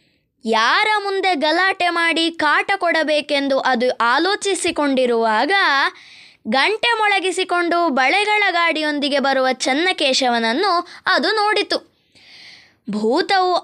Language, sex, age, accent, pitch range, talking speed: Kannada, female, 20-39, native, 285-380 Hz, 75 wpm